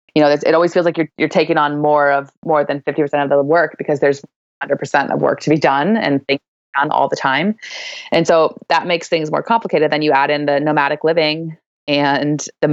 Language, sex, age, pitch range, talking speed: English, female, 20-39, 145-165 Hz, 235 wpm